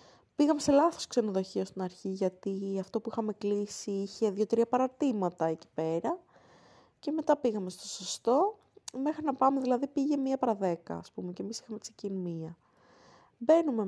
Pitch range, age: 185-245 Hz, 20-39